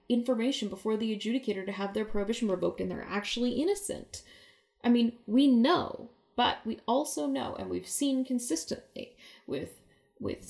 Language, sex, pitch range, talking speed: English, female, 215-275 Hz, 155 wpm